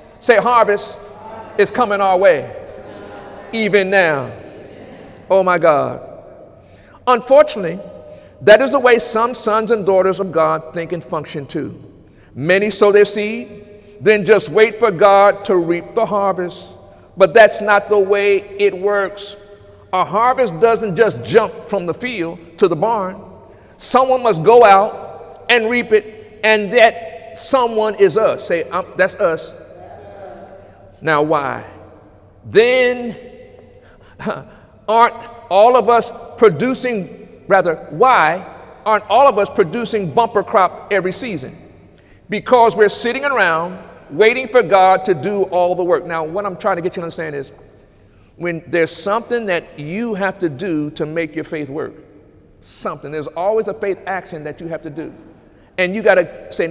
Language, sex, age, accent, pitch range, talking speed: English, male, 50-69, American, 175-225 Hz, 150 wpm